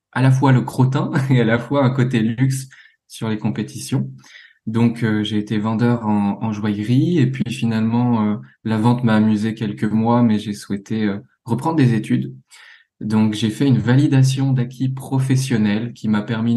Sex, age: male, 20-39